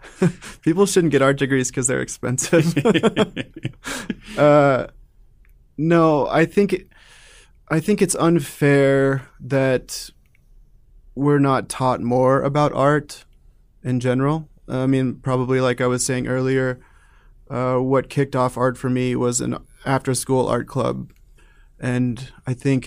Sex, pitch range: male, 125-145 Hz